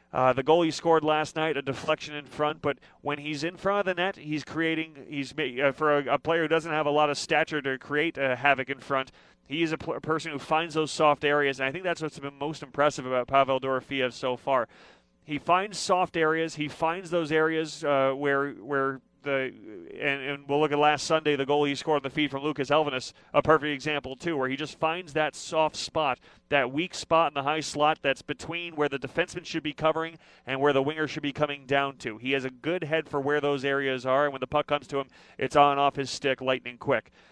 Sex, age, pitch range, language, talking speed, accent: male, 30-49, 135-155 Hz, English, 245 wpm, American